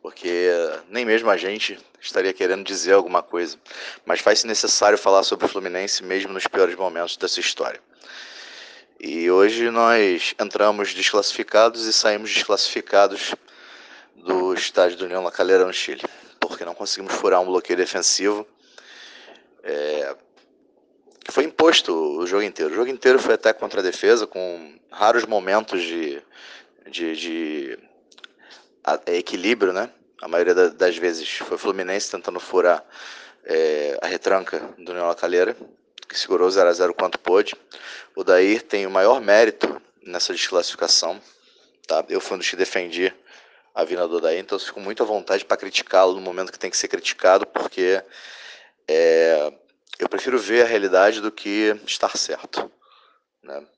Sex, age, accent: male, 30-49, Brazilian